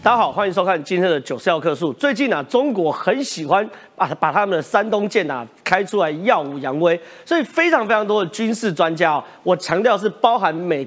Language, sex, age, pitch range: Chinese, male, 40-59, 160-225 Hz